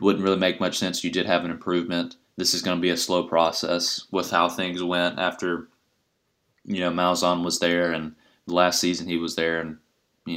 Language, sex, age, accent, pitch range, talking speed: English, male, 20-39, American, 80-90 Hz, 215 wpm